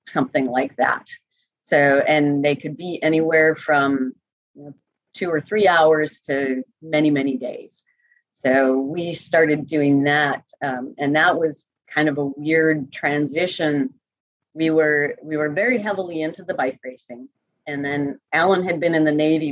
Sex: female